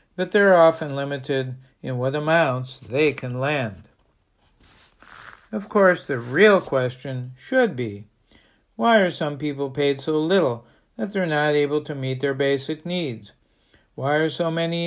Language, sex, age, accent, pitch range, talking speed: English, male, 60-79, American, 130-165 Hz, 150 wpm